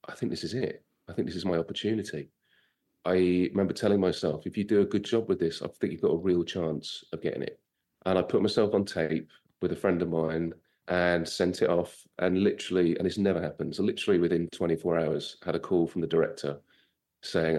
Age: 30-49